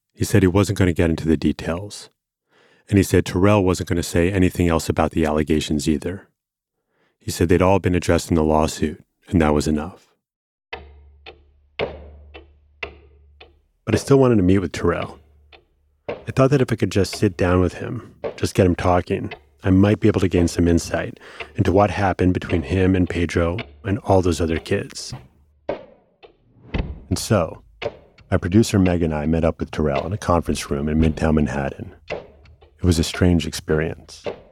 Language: English